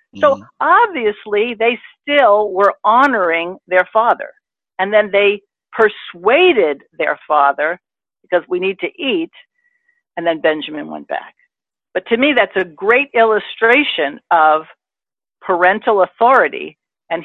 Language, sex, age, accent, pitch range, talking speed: English, female, 50-69, American, 175-240 Hz, 120 wpm